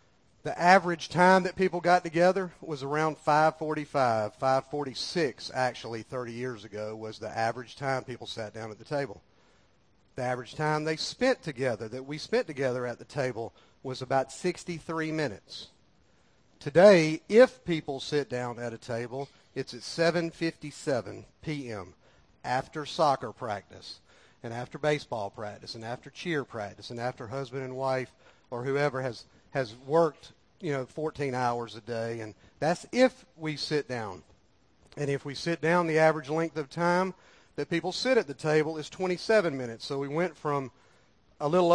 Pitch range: 125-165 Hz